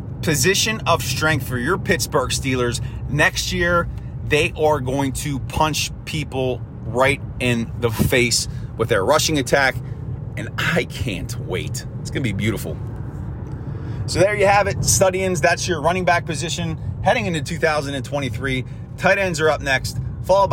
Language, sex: English, male